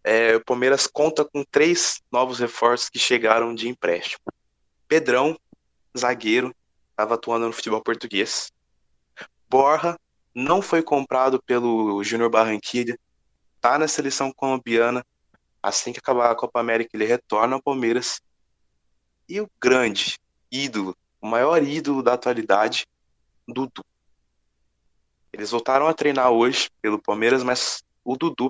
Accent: Brazilian